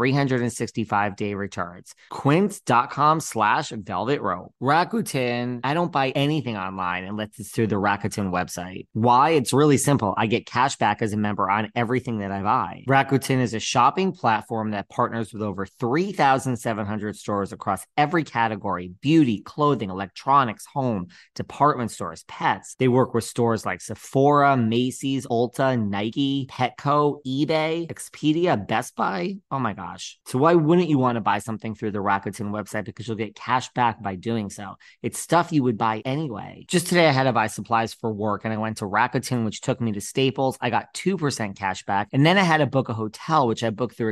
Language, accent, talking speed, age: English, American, 185 wpm, 30-49